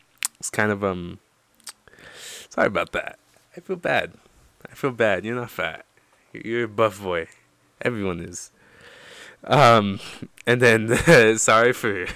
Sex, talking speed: male, 140 wpm